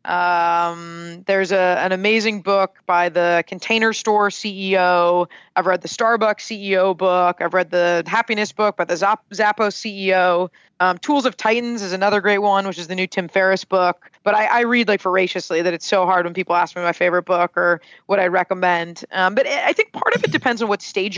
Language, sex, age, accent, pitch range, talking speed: English, female, 20-39, American, 180-210 Hz, 210 wpm